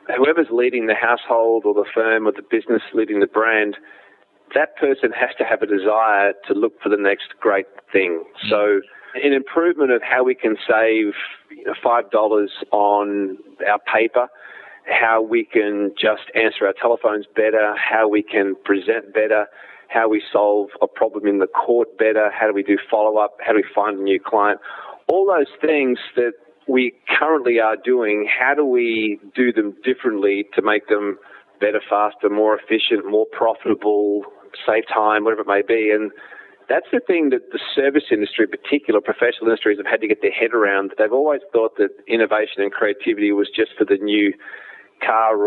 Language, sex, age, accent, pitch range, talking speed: English, male, 30-49, Australian, 105-165 Hz, 175 wpm